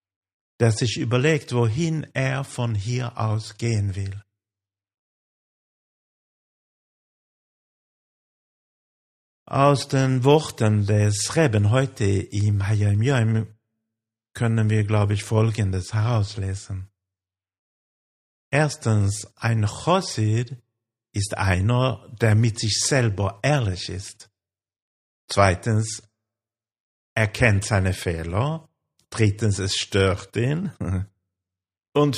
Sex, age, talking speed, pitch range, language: male, 50-69, 85 wpm, 95-120 Hz, German